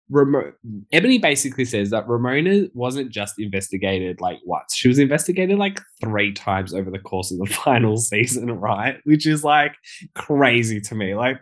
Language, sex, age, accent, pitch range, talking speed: English, male, 10-29, Australian, 100-140 Hz, 165 wpm